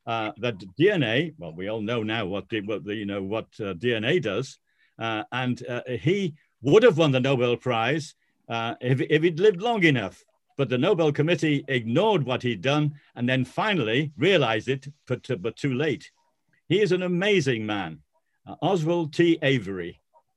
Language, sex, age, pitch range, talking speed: English, male, 50-69, 120-165 Hz, 185 wpm